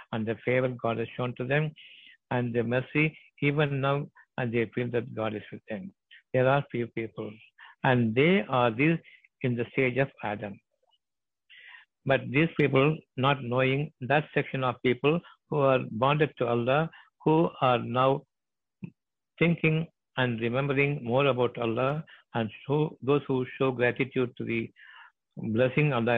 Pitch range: 115-140 Hz